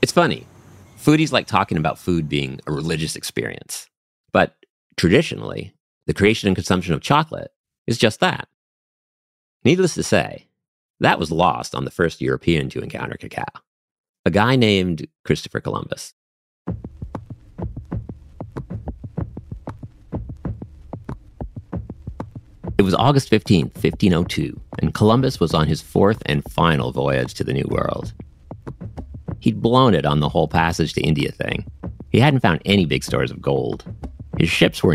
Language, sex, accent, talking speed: English, male, American, 135 wpm